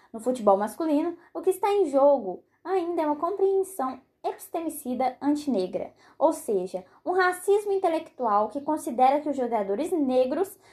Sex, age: female, 10-29